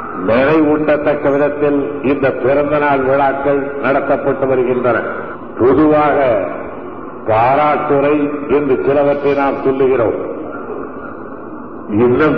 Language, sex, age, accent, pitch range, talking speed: Tamil, male, 60-79, native, 135-145 Hz, 80 wpm